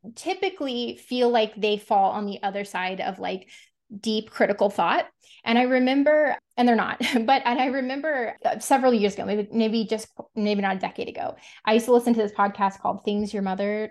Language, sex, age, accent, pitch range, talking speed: English, female, 20-39, American, 205-245 Hz, 200 wpm